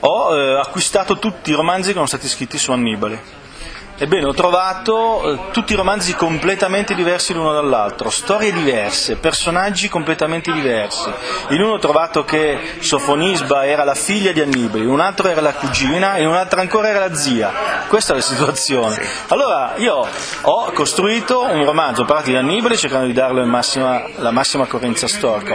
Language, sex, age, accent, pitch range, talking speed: Italian, male, 40-59, native, 135-185 Hz, 170 wpm